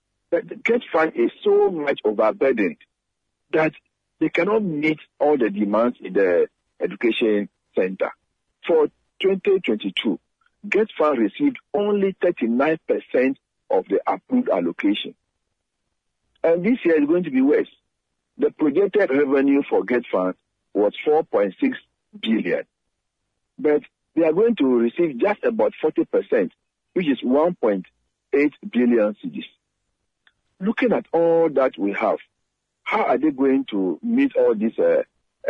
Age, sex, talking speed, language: 50-69, male, 125 wpm, English